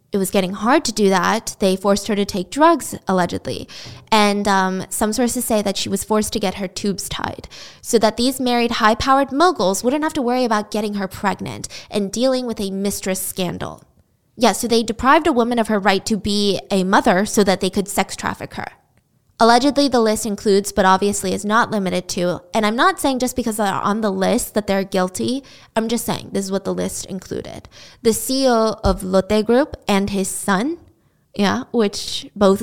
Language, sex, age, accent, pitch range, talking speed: English, female, 10-29, American, 195-235 Hz, 205 wpm